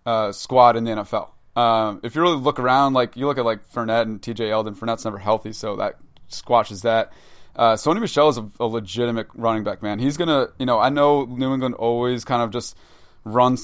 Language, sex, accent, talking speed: English, male, American, 220 wpm